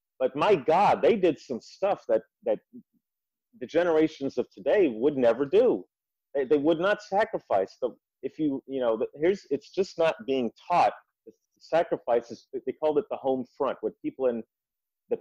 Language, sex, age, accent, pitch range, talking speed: English, male, 40-59, American, 120-175 Hz, 180 wpm